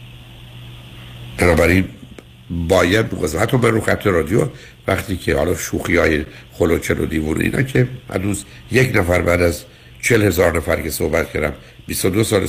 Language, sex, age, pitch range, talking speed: Persian, male, 60-79, 80-115 Hz, 150 wpm